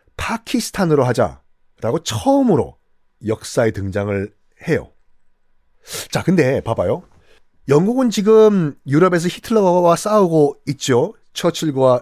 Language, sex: Korean, male